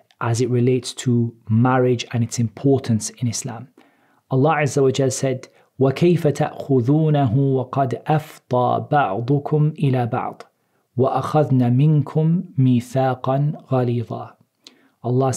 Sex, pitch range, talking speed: male, 125-150 Hz, 100 wpm